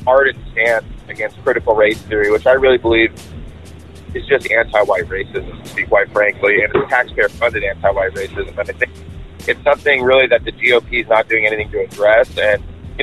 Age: 30-49